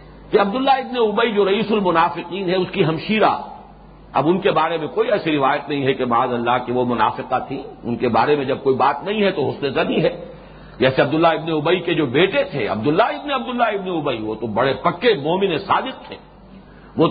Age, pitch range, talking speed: 50-69, 145-195 Hz, 95 wpm